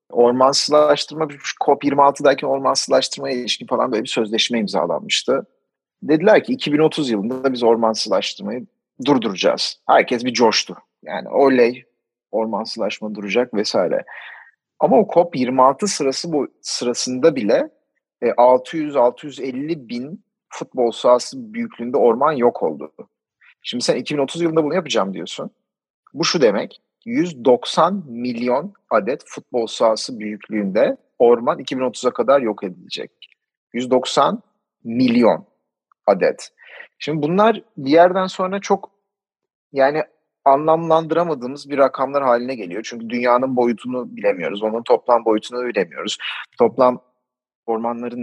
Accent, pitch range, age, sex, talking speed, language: native, 120-170 Hz, 40-59, male, 110 wpm, Turkish